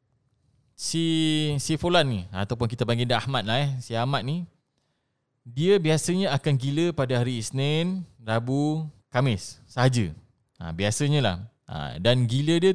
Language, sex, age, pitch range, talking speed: Malay, male, 20-39, 120-145 Hz, 140 wpm